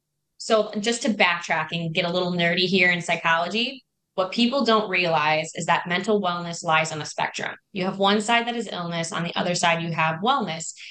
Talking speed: 210 wpm